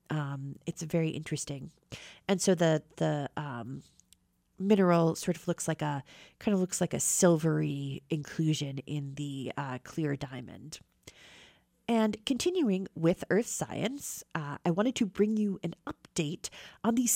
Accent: American